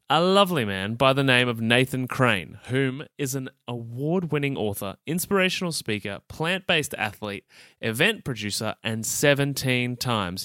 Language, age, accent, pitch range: English, 20-39, Australian, 110-145 Hz